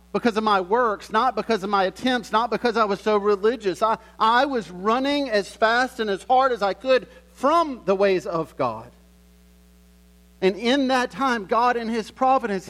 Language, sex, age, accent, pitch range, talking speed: English, male, 40-59, American, 170-270 Hz, 190 wpm